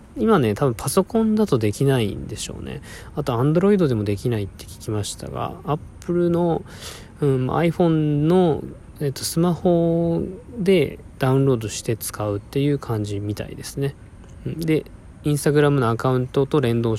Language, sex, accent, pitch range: Japanese, male, native, 105-145 Hz